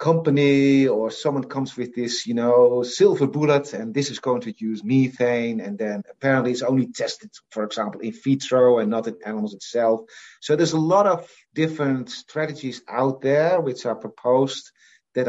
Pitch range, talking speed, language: 115-150 Hz, 175 wpm, English